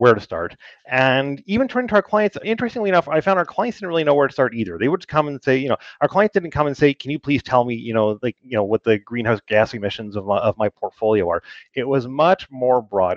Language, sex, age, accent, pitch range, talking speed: English, male, 30-49, American, 110-145 Hz, 280 wpm